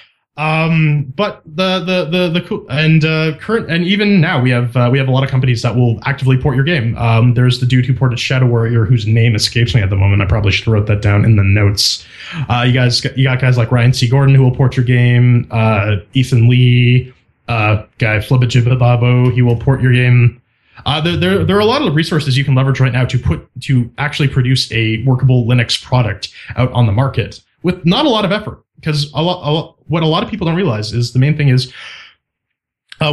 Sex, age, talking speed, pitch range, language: male, 20-39, 235 wpm, 120-145 Hz, English